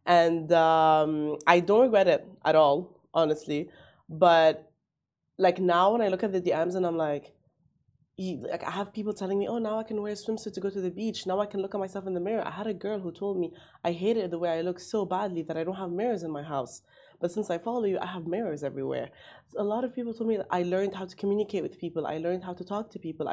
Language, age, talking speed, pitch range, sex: Arabic, 20-39, 260 wpm, 165-210 Hz, female